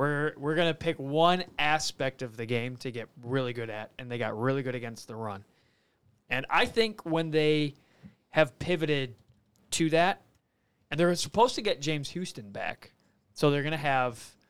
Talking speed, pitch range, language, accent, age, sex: 185 wpm, 125-160 Hz, English, American, 30-49, male